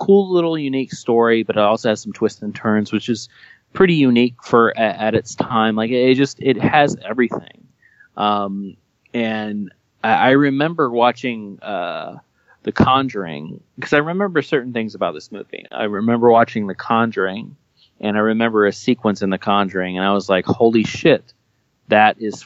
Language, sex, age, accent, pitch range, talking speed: English, male, 30-49, American, 100-130 Hz, 175 wpm